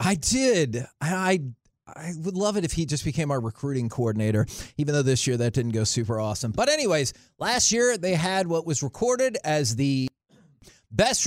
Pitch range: 135-195 Hz